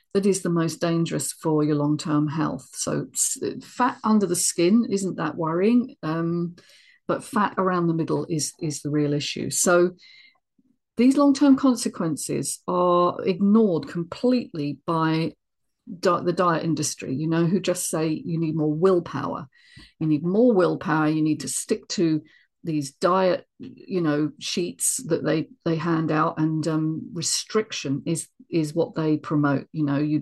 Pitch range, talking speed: 155-205 Hz, 160 wpm